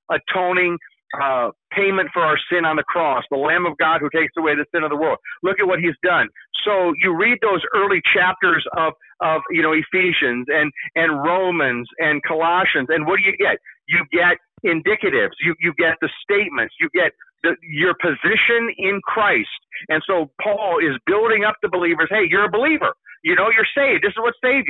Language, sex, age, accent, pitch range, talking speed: English, male, 50-69, American, 165-215 Hz, 200 wpm